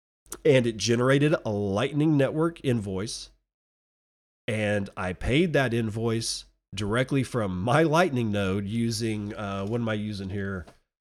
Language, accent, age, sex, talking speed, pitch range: English, American, 40-59, male, 130 wpm, 105-135 Hz